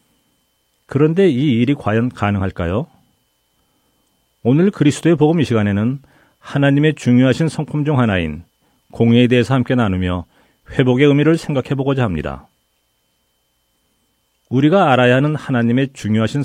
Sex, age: male, 40-59